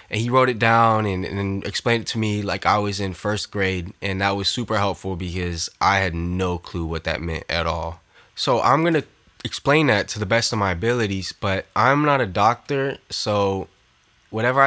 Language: English